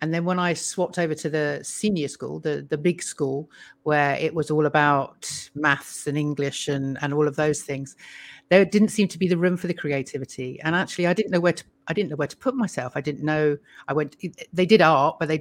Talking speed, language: 240 wpm, English